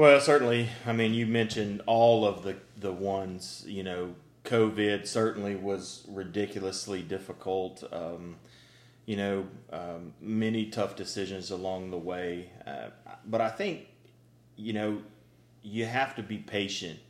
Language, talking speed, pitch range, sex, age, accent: English, 135 wpm, 90-110 Hz, male, 30-49, American